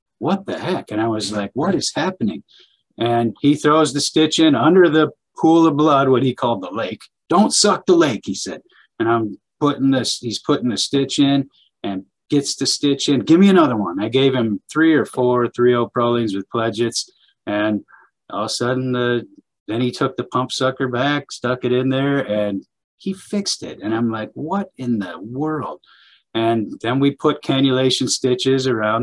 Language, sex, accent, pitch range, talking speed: English, male, American, 110-135 Hz, 195 wpm